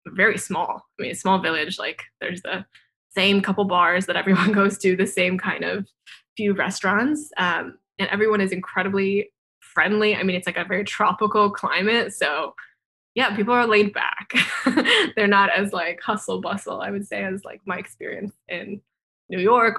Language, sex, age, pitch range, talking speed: English, female, 10-29, 185-215 Hz, 180 wpm